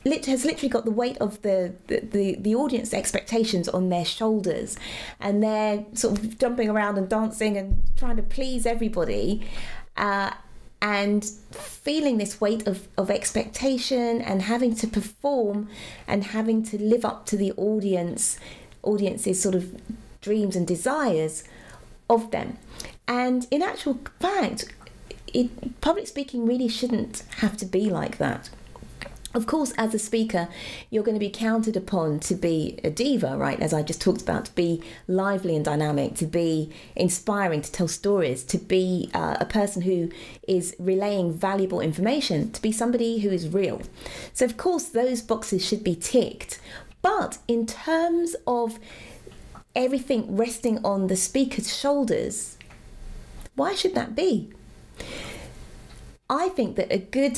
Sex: female